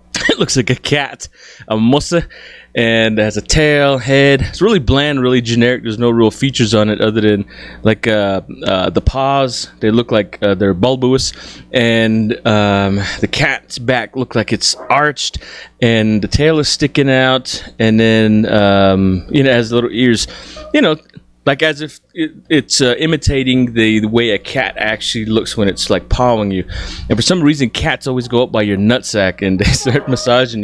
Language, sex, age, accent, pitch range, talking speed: English, male, 30-49, American, 110-145 Hz, 185 wpm